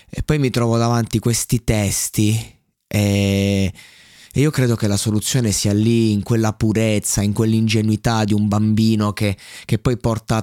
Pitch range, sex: 100-120 Hz, male